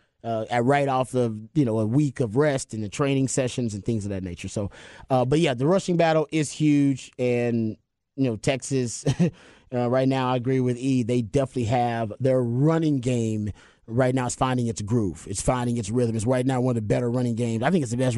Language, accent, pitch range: English, American, 115-145 Hz